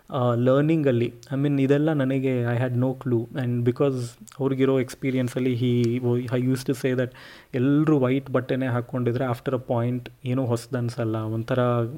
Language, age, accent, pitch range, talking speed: Kannada, 30-49, native, 120-135 Hz, 175 wpm